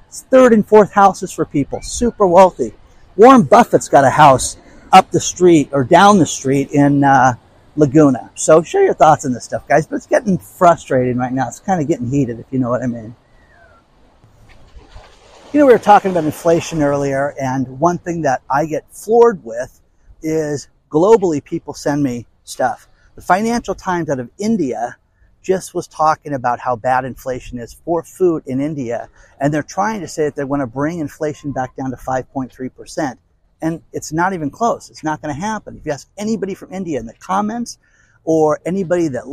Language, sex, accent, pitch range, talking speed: English, male, American, 135-185 Hz, 190 wpm